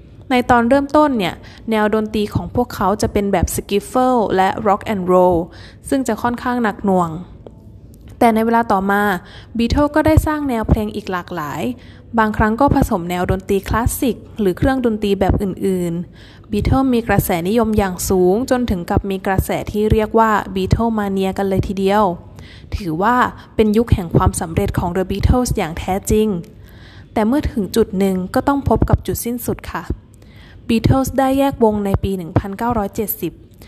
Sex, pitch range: female, 180-230 Hz